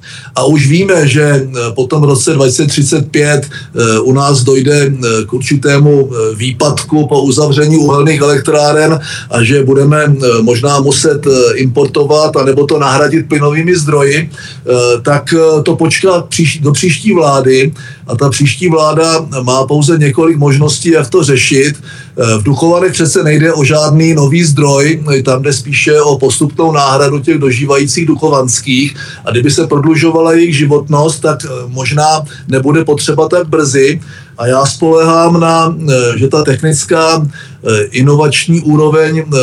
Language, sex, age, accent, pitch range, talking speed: Czech, male, 50-69, native, 135-160 Hz, 130 wpm